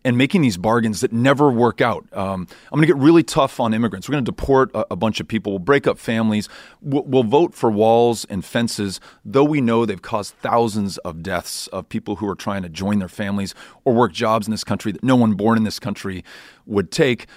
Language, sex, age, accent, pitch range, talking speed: English, male, 30-49, American, 100-125 Hz, 240 wpm